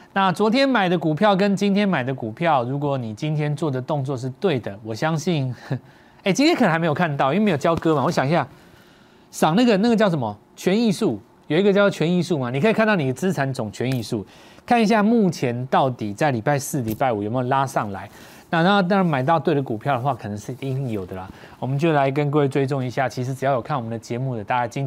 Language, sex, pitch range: Chinese, male, 125-180 Hz